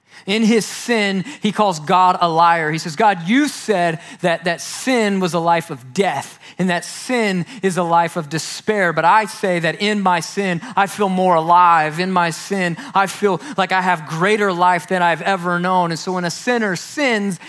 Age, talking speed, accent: 30-49, 205 wpm, American